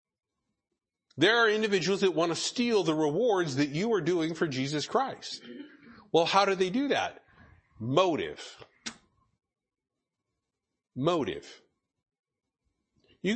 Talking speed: 110 wpm